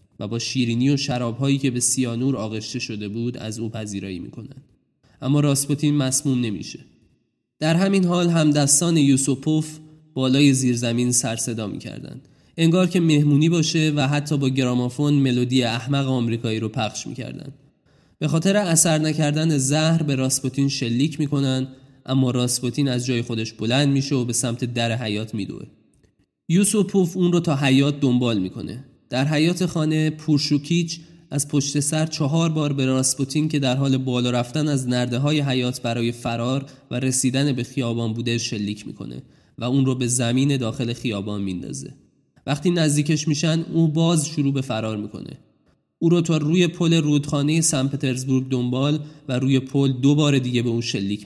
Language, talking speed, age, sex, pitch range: Persian, 160 wpm, 20-39, male, 120-150 Hz